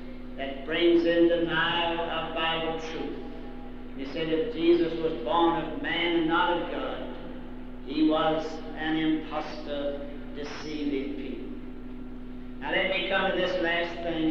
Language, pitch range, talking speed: English, 145-185 Hz, 140 wpm